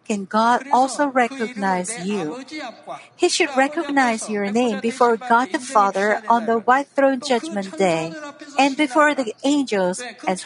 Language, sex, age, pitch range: Korean, female, 50-69, 225-285 Hz